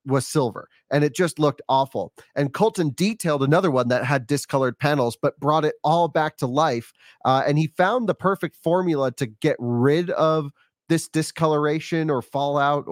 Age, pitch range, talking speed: 30-49, 135-165 Hz, 175 wpm